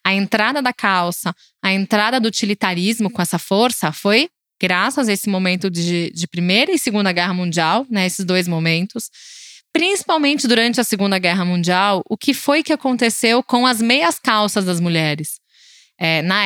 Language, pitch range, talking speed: Portuguese, 185-265 Hz, 165 wpm